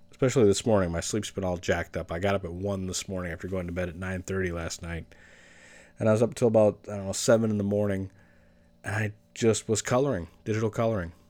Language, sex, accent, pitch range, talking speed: English, male, American, 90-110 Hz, 240 wpm